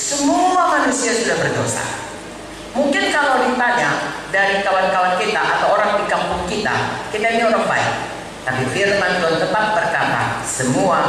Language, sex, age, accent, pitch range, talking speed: English, female, 40-59, Indonesian, 220-305 Hz, 135 wpm